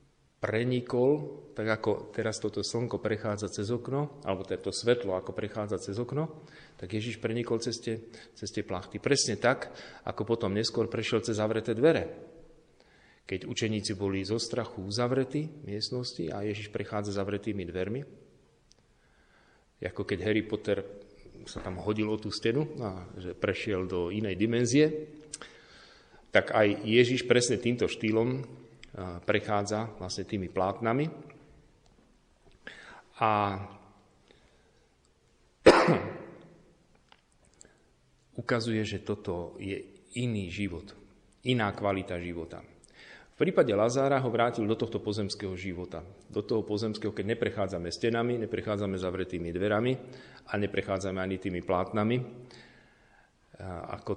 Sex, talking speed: male, 115 wpm